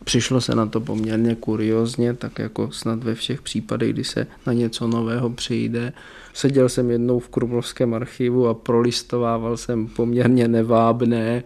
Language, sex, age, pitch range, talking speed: Czech, male, 20-39, 115-130 Hz, 150 wpm